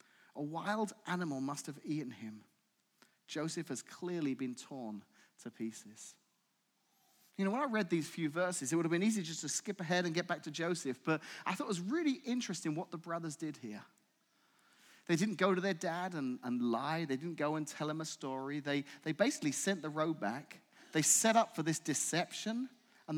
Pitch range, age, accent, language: 125-195 Hz, 30-49, British, English